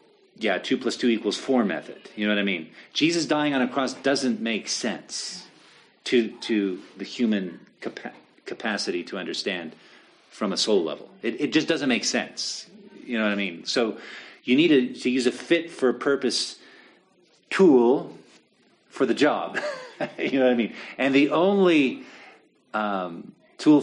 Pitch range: 105-130 Hz